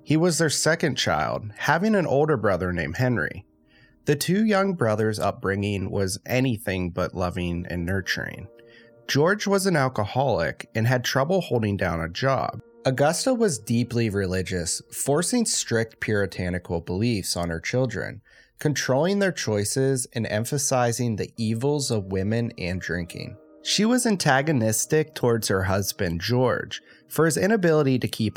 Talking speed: 140 wpm